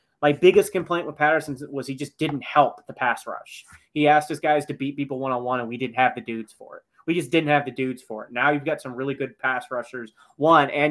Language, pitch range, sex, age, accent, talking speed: English, 125-145 Hz, male, 20-39, American, 260 wpm